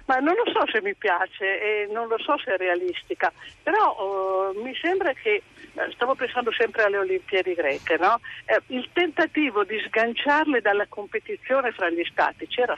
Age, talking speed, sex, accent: 50-69, 175 wpm, female, native